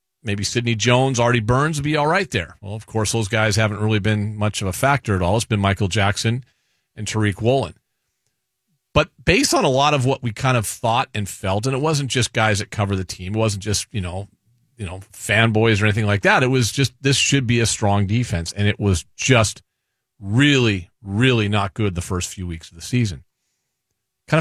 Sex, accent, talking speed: male, American, 220 wpm